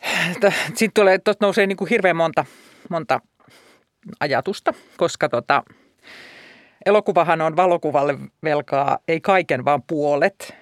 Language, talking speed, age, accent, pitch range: Finnish, 100 wpm, 40-59, native, 150-185 Hz